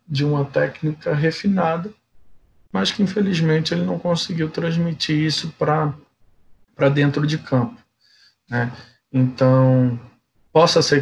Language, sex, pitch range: Portuguese, male, 130-150 Hz